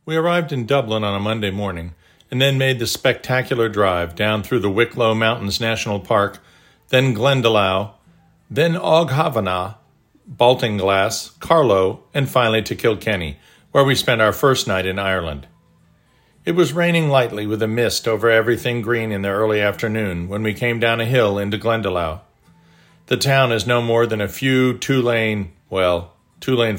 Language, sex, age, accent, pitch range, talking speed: English, male, 50-69, American, 100-130 Hz, 160 wpm